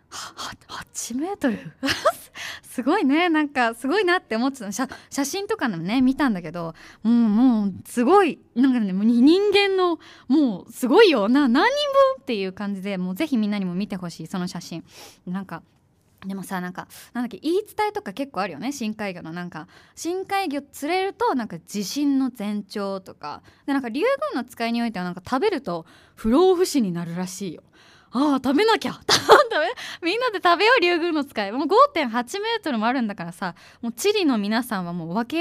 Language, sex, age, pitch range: Japanese, female, 20-39, 195-320 Hz